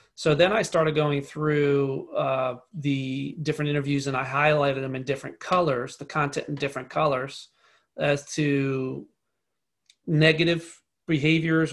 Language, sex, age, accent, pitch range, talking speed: English, male, 40-59, American, 140-155 Hz, 135 wpm